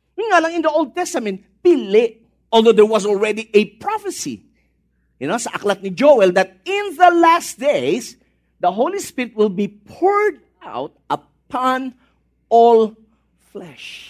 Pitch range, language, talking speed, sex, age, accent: 200-295 Hz, English, 140 wpm, male, 40-59, Filipino